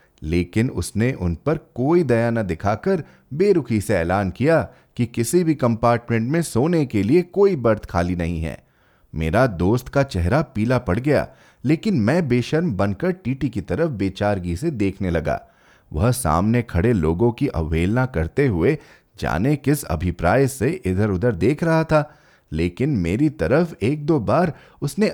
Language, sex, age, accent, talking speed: Hindi, male, 30-49, native, 160 wpm